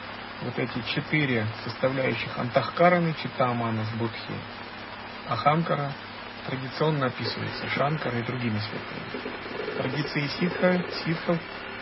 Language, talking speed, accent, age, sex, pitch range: Russian, 80 wpm, native, 40-59, male, 120-150 Hz